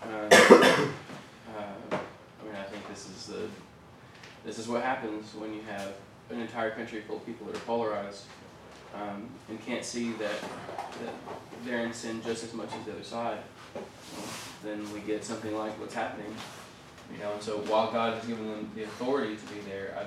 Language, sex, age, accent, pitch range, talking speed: English, male, 20-39, American, 105-115 Hz, 185 wpm